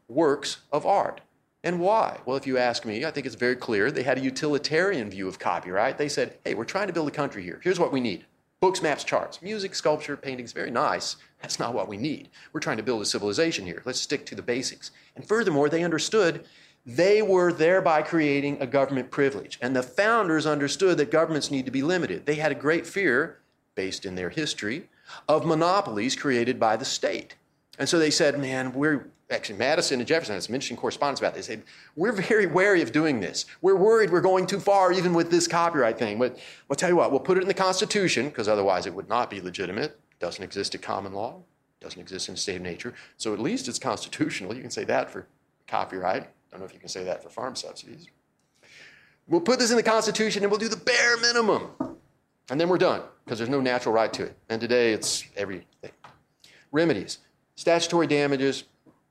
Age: 40-59